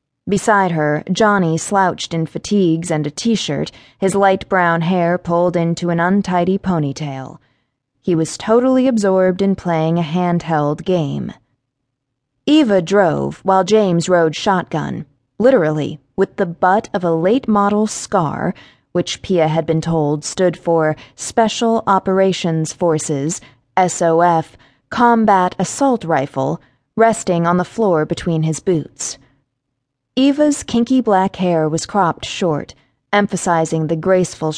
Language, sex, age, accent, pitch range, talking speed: English, female, 20-39, American, 150-205 Hz, 125 wpm